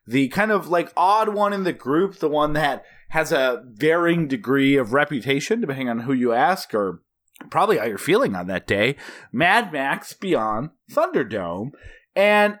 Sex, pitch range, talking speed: male, 130-195 Hz, 170 wpm